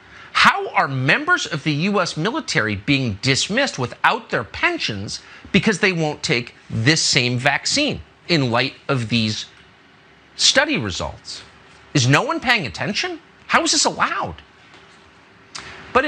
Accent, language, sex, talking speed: American, English, male, 130 wpm